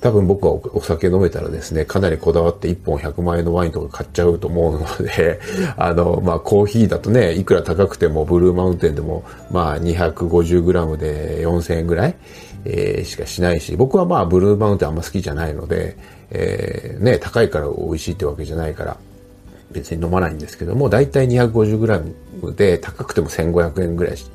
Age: 40-59